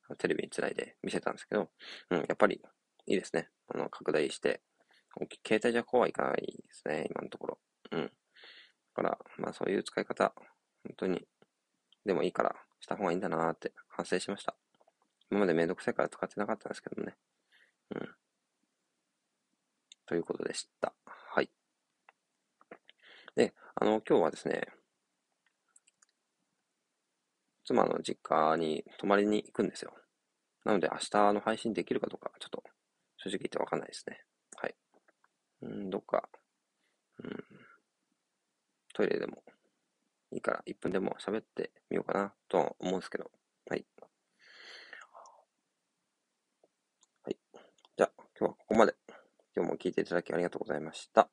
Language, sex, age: Japanese, male, 20-39